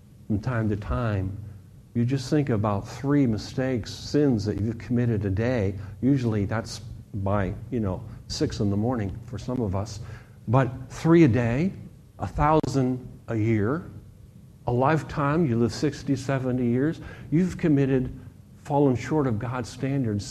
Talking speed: 150 wpm